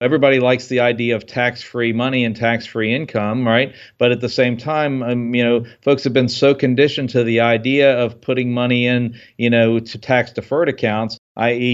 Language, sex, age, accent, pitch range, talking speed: English, male, 40-59, American, 115-130 Hz, 190 wpm